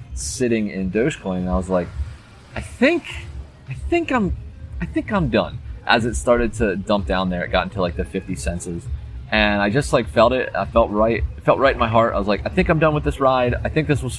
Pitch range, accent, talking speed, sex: 95-120 Hz, American, 250 wpm, male